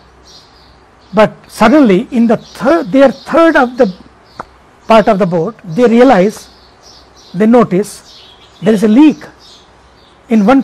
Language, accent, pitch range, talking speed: English, Indian, 165-250 Hz, 130 wpm